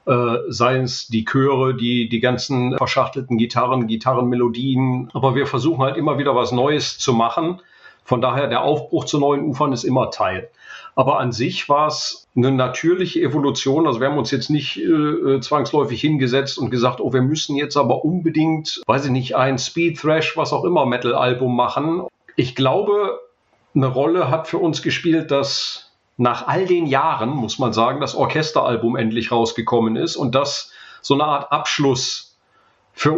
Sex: male